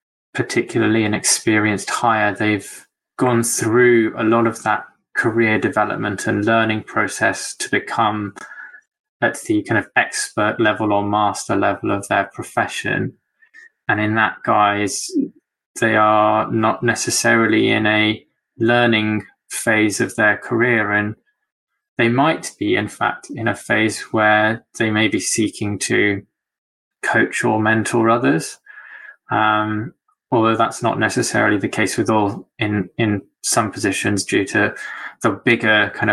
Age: 20-39